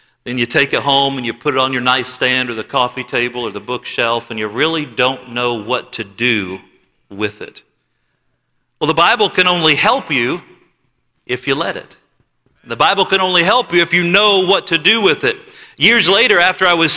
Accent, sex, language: American, male, English